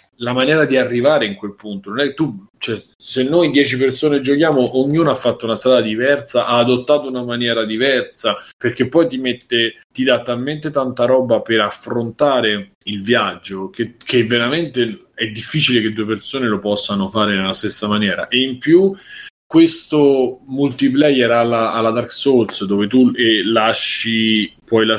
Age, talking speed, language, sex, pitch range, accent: 20-39, 165 wpm, Italian, male, 110-135 Hz, native